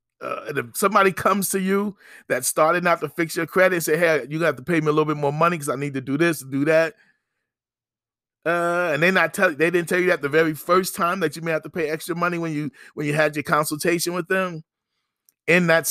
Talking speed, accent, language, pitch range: 260 wpm, American, English, 150-180 Hz